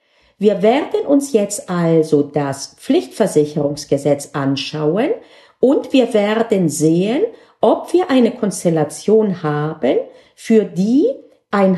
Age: 50-69